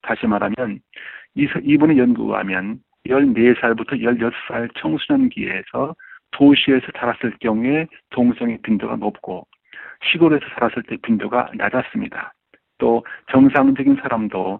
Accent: native